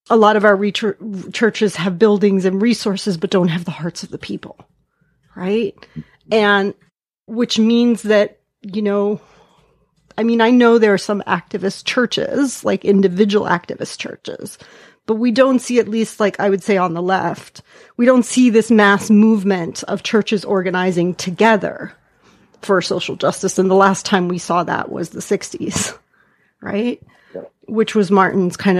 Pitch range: 185-225 Hz